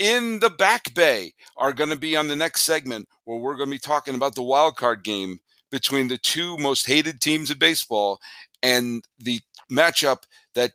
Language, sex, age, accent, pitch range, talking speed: English, male, 50-69, American, 120-155 Hz, 195 wpm